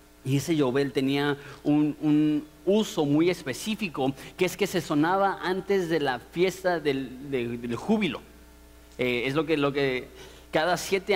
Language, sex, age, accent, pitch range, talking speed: Spanish, male, 30-49, Mexican, 125-165 Hz, 160 wpm